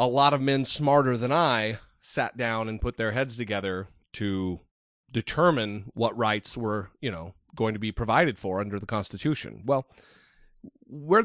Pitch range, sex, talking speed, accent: 110-145 Hz, male, 165 wpm, American